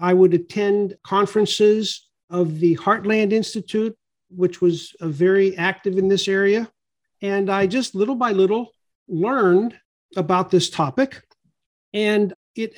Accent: American